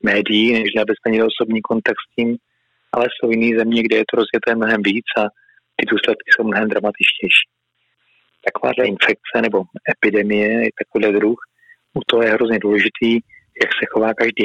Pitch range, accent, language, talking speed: 105-115 Hz, native, Czech, 160 wpm